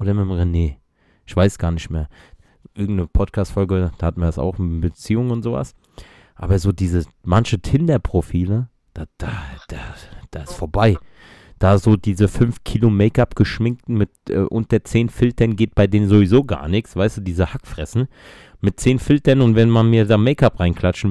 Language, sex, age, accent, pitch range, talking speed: German, male, 30-49, German, 90-115 Hz, 175 wpm